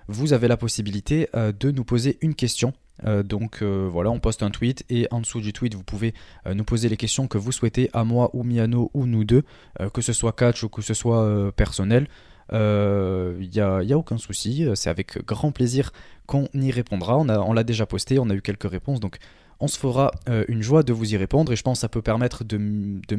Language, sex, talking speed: French, male, 230 wpm